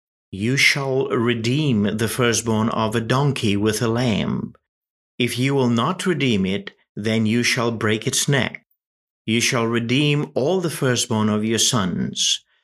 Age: 50-69